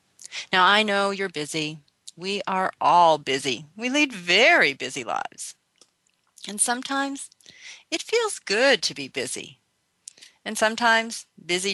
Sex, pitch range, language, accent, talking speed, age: female, 155-215 Hz, English, American, 130 wpm, 40-59